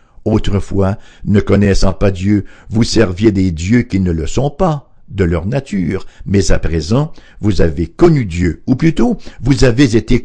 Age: 60-79